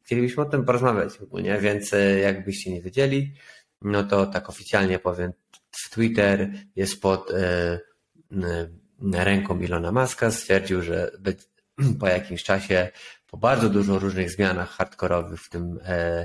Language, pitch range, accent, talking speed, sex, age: Polish, 90-105 Hz, native, 135 wpm, male, 30-49